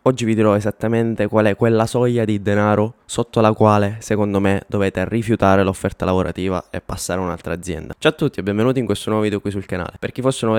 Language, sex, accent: Italian, male, native